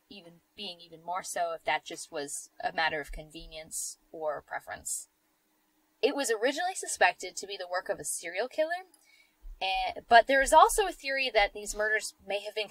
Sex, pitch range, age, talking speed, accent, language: female, 170-245 Hz, 10-29, 190 wpm, American, English